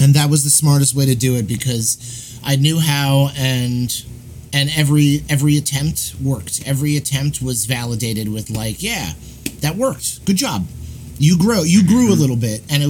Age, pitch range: 30-49, 125-150 Hz